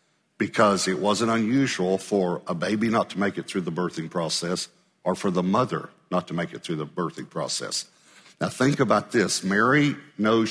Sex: male